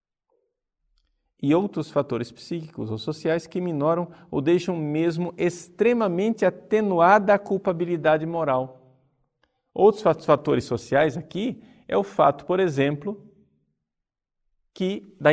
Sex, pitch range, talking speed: male, 140-190 Hz, 100 wpm